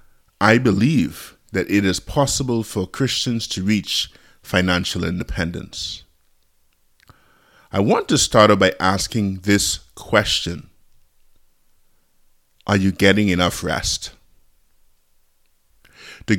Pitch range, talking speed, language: 80-105 Hz, 95 wpm, English